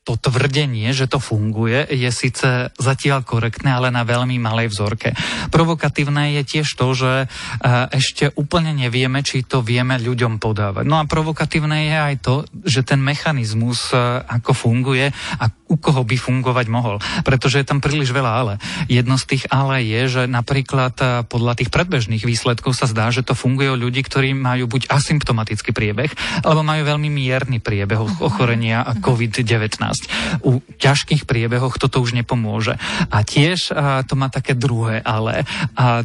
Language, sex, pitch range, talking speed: Slovak, male, 120-145 Hz, 160 wpm